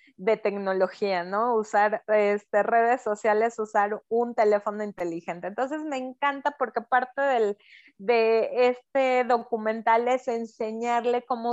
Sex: female